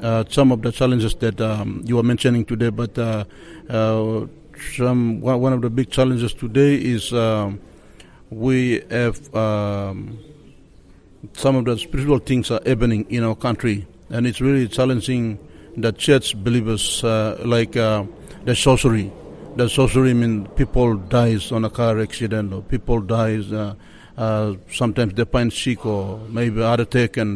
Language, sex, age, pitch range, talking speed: English, male, 60-79, 105-120 Hz, 160 wpm